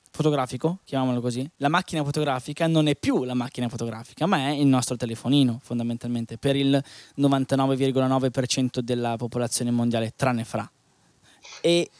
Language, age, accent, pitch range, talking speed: Italian, 20-39, native, 125-155 Hz, 135 wpm